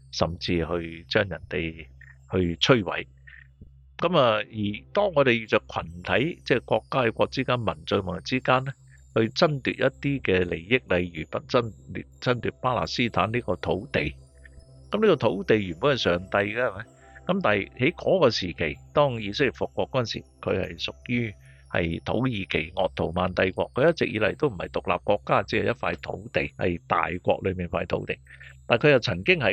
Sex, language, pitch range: male, Chinese, 85-130 Hz